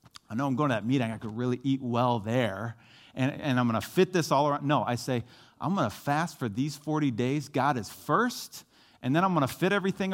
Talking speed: 255 wpm